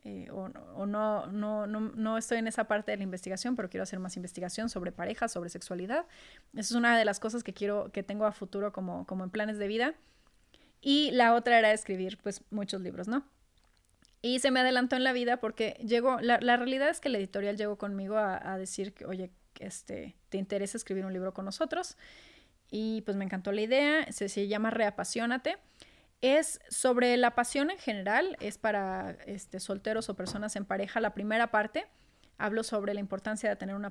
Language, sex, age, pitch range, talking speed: Spanish, female, 30-49, 200-240 Hz, 205 wpm